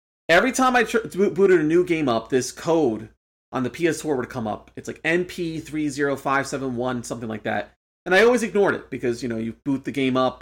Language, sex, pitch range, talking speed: English, male, 115-155 Hz, 205 wpm